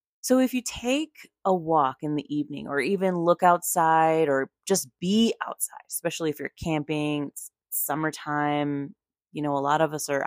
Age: 20-39